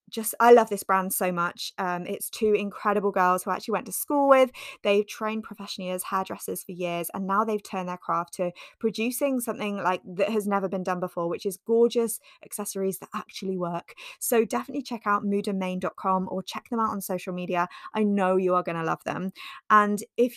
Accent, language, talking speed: British, English, 205 wpm